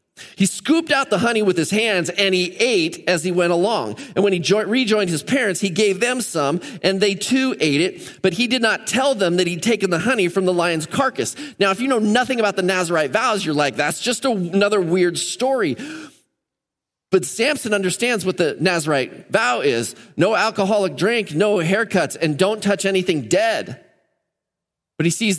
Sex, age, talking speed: male, 30-49, 195 wpm